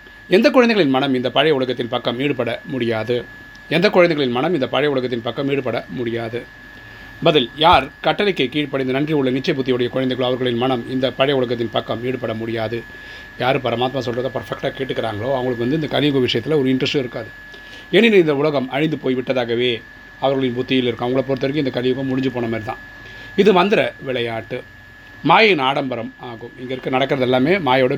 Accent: native